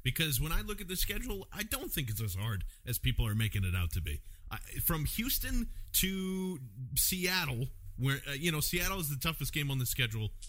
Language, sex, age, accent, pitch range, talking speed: English, male, 40-59, American, 125-185 Hz, 210 wpm